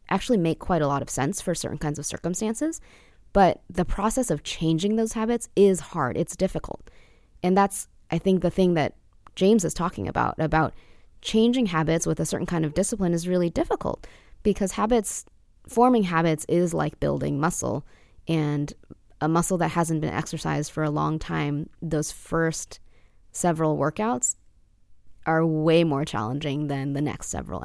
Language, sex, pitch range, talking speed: English, female, 140-190 Hz, 165 wpm